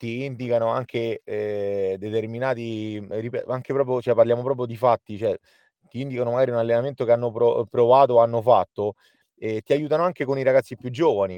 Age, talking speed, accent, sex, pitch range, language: 30-49, 165 wpm, native, male, 110-140 Hz, Italian